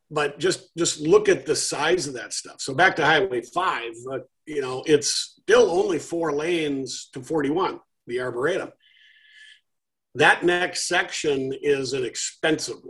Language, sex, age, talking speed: English, male, 50-69, 155 wpm